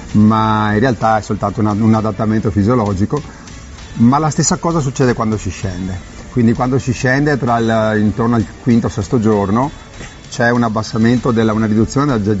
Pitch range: 105-125 Hz